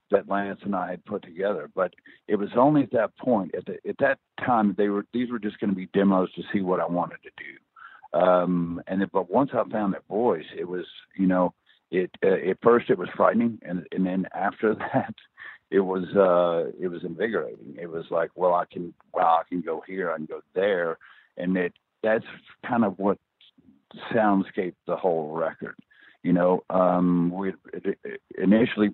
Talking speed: 195 wpm